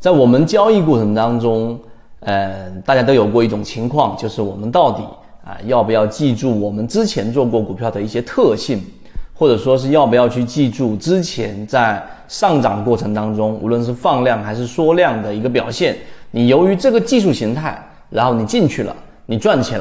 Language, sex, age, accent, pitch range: Chinese, male, 30-49, native, 110-145 Hz